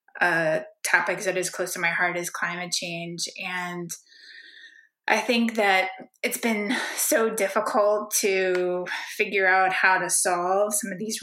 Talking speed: 150 wpm